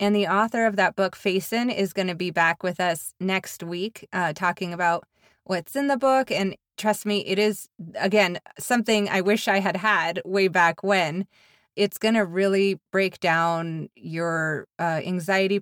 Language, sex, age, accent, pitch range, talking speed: English, female, 20-39, American, 170-210 Hz, 180 wpm